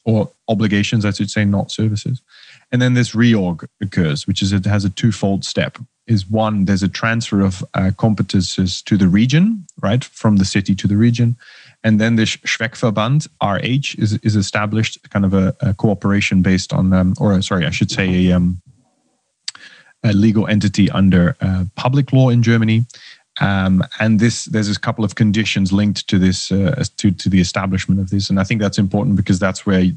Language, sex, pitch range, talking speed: English, male, 100-115 Hz, 190 wpm